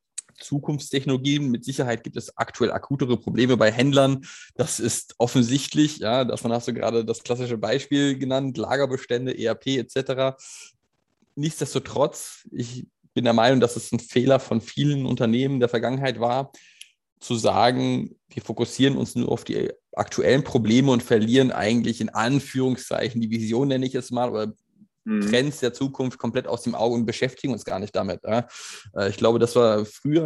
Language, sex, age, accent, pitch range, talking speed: German, male, 20-39, German, 115-135 Hz, 160 wpm